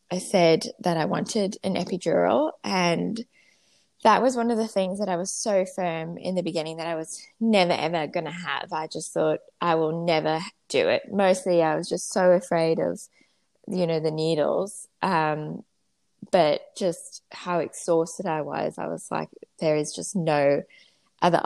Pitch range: 160-195 Hz